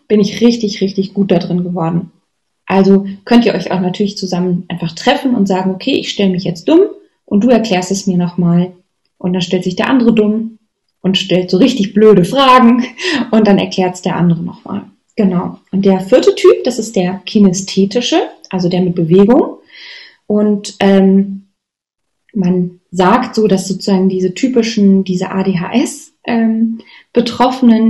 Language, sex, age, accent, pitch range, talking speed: German, female, 20-39, German, 190-230 Hz, 165 wpm